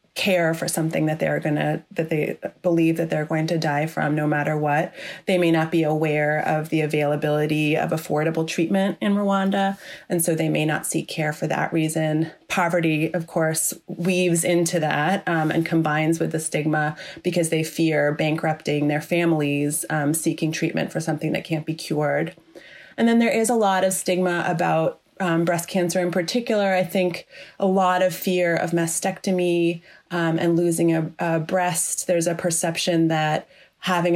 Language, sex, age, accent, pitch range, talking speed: English, female, 30-49, American, 155-180 Hz, 180 wpm